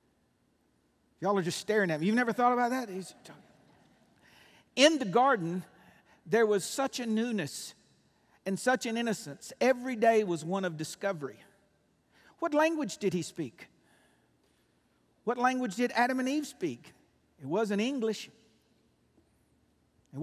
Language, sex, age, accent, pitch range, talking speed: English, male, 50-69, American, 185-230 Hz, 140 wpm